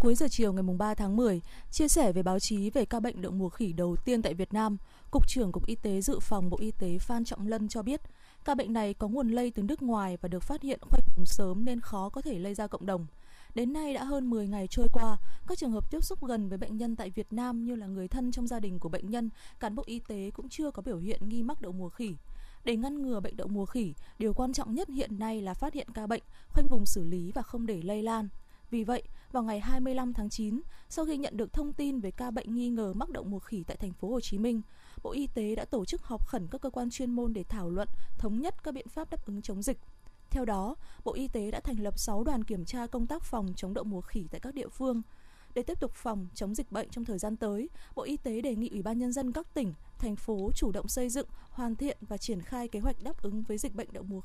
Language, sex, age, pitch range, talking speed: Vietnamese, female, 20-39, 205-255 Hz, 280 wpm